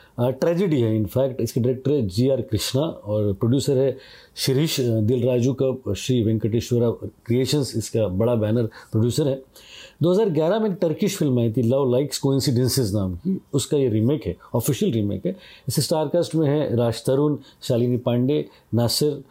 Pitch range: 120-160 Hz